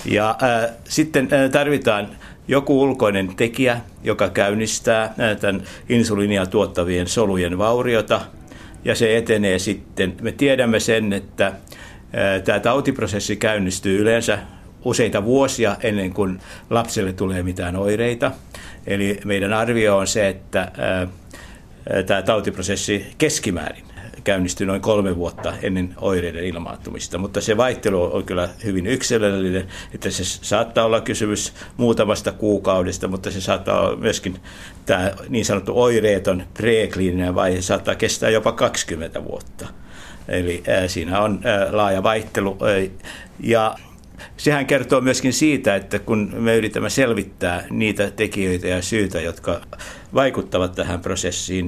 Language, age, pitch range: Finnish, 60-79, 95-115 Hz